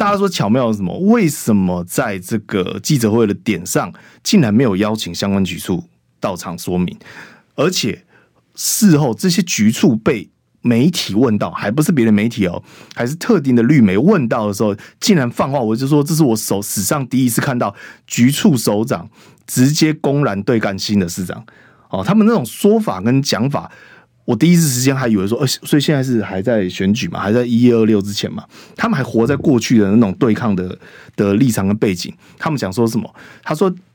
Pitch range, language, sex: 105-160 Hz, Chinese, male